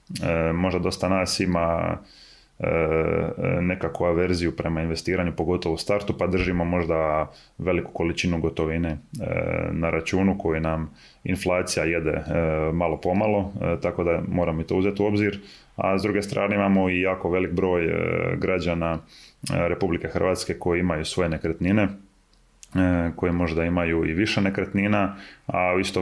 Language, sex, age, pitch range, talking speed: Croatian, male, 20-39, 85-95 Hz, 135 wpm